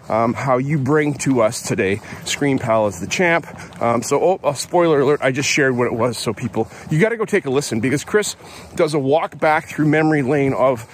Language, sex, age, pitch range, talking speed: English, male, 40-59, 125-165 Hz, 240 wpm